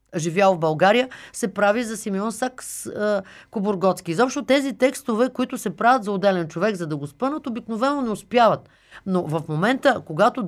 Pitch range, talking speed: 185-245 Hz, 170 wpm